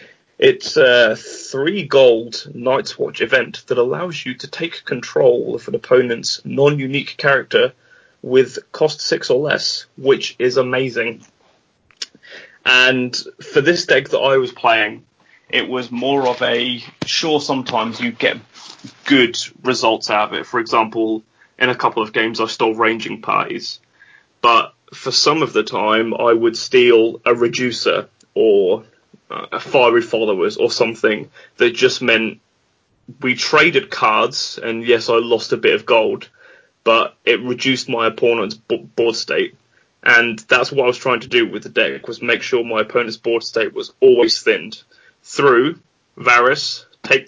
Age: 20-39